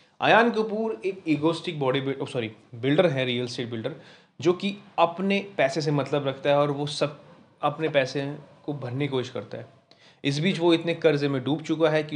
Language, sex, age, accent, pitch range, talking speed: Hindi, male, 20-39, native, 125-155 Hz, 200 wpm